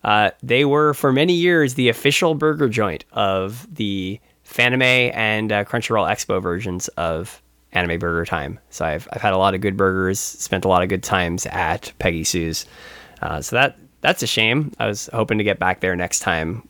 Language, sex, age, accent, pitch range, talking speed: English, male, 20-39, American, 95-130 Hz, 200 wpm